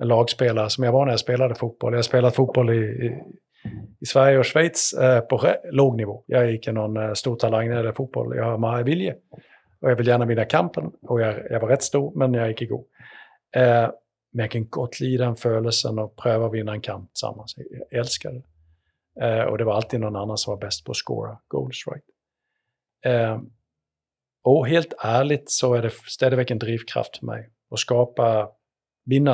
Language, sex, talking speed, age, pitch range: Danish, male, 200 wpm, 50-69, 110-130 Hz